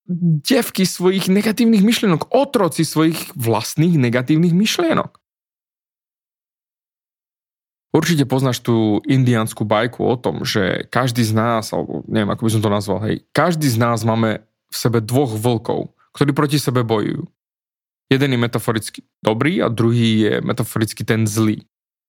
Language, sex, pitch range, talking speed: Slovak, male, 115-155 Hz, 135 wpm